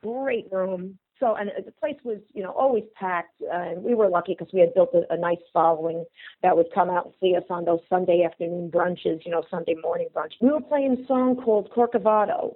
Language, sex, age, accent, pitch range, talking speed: English, female, 40-59, American, 175-230 Hz, 230 wpm